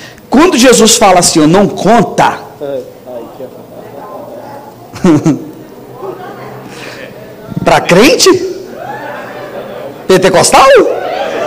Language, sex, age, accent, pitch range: Portuguese, male, 50-69, Brazilian, 200-250 Hz